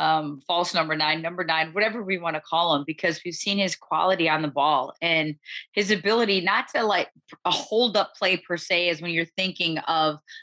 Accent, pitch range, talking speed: American, 160-205 Hz, 215 wpm